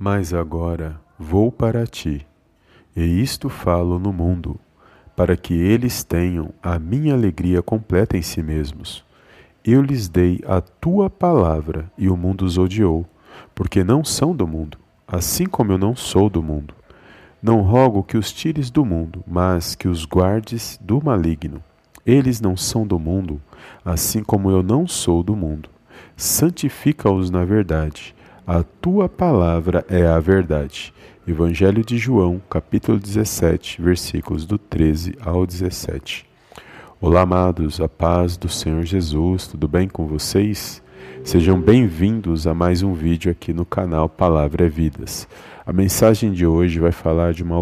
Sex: male